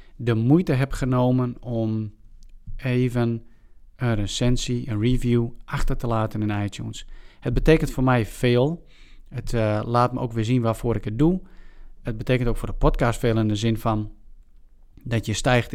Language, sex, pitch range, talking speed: Dutch, male, 110-125 Hz, 170 wpm